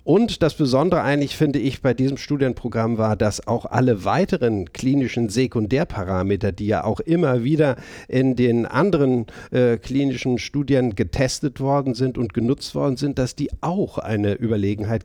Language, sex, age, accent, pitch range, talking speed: German, male, 50-69, German, 115-140 Hz, 155 wpm